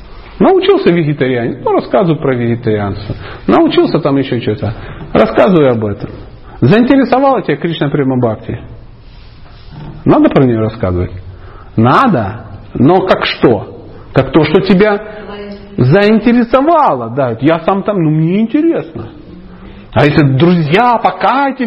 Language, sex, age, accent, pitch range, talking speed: Russian, male, 40-59, native, 130-210 Hz, 115 wpm